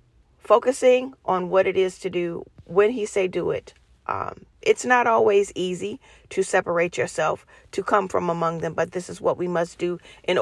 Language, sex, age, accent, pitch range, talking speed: English, female, 40-59, American, 175-210 Hz, 190 wpm